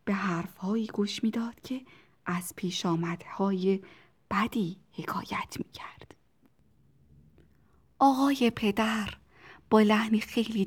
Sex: female